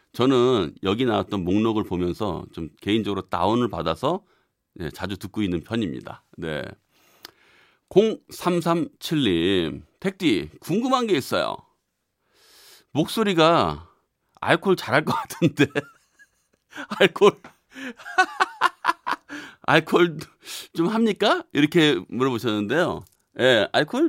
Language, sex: Korean, male